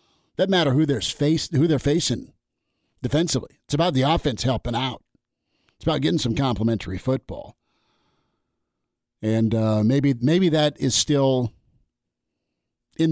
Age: 50-69